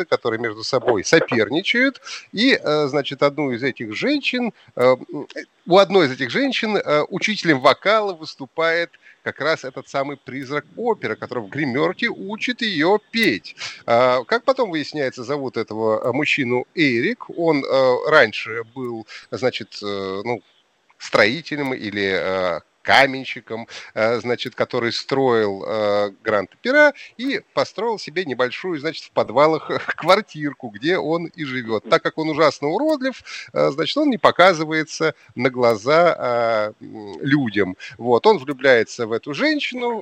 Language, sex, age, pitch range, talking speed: Russian, male, 30-49, 125-195 Hz, 125 wpm